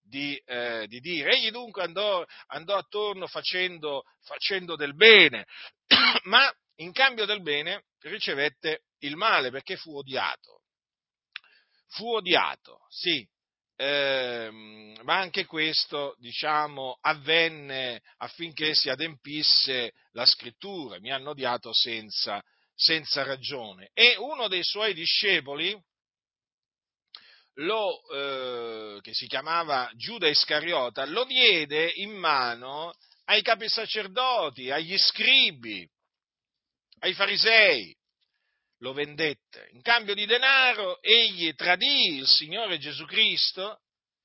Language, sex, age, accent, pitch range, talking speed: Italian, male, 40-59, native, 135-210 Hz, 105 wpm